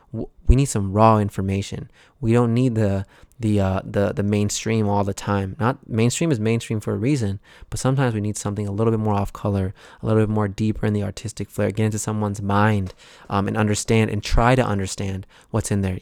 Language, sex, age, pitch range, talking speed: English, male, 20-39, 100-115 Hz, 215 wpm